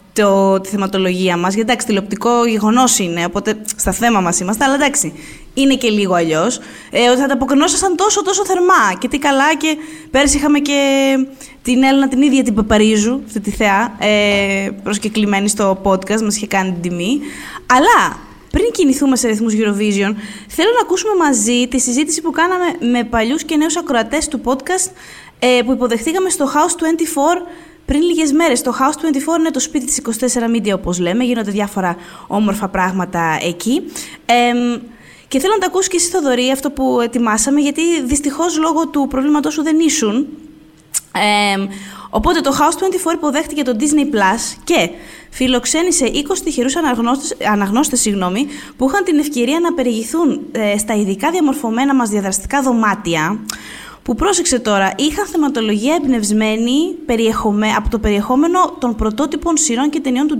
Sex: female